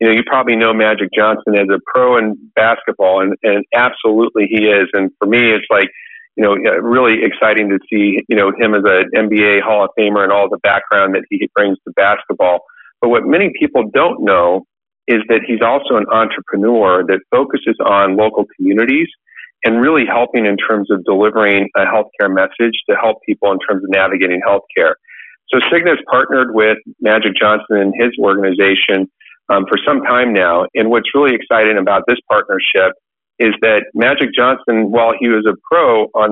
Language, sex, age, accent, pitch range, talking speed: English, male, 40-59, American, 100-125 Hz, 190 wpm